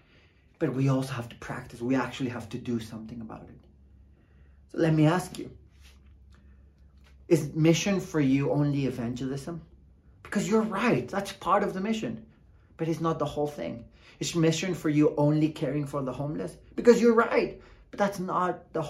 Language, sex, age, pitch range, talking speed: English, male, 30-49, 130-175 Hz, 175 wpm